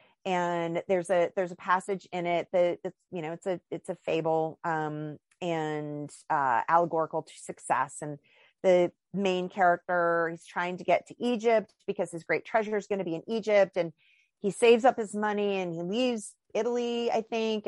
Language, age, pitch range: English, 30-49, 165-195 Hz